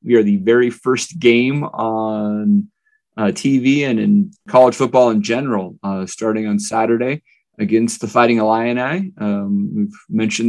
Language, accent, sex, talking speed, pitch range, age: English, American, male, 150 wpm, 105-135 Hz, 30-49